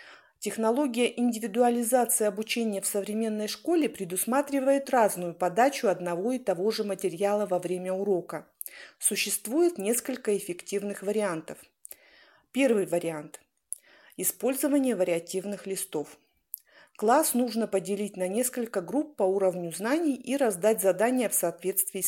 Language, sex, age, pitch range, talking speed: Russian, female, 40-59, 190-245 Hz, 110 wpm